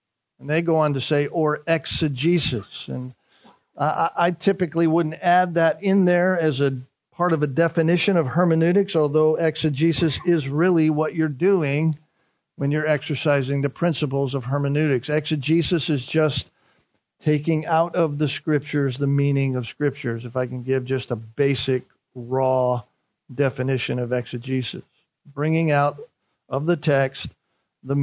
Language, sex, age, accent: English, male, 50-69, American